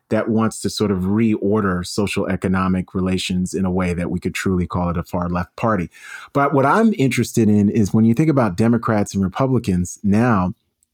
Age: 30-49